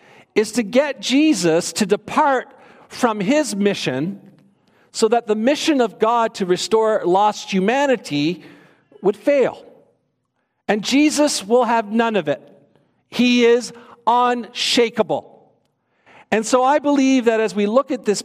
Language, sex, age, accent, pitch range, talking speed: English, male, 50-69, American, 195-250 Hz, 135 wpm